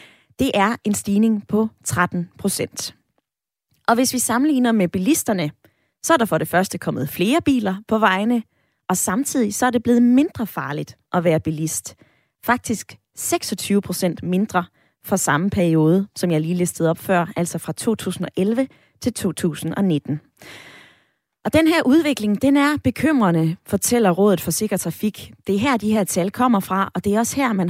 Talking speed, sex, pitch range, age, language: 170 wpm, female, 180-235 Hz, 20-39, Danish